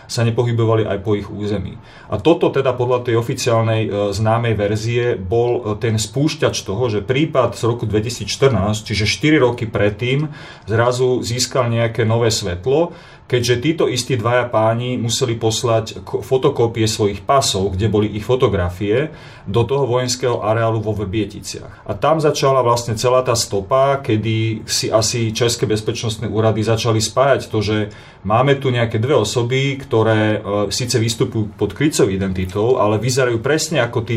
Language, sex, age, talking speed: Slovak, male, 30-49, 150 wpm